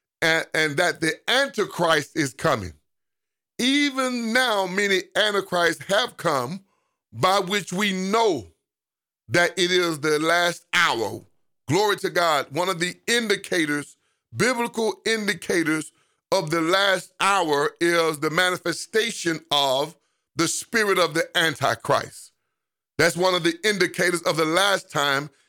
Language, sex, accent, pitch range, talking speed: English, male, American, 160-200 Hz, 125 wpm